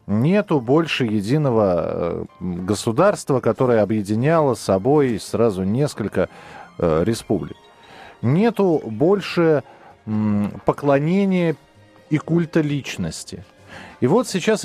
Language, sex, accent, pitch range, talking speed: Russian, male, native, 105-165 Hz, 85 wpm